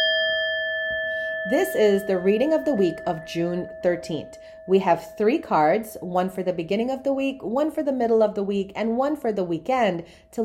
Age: 40-59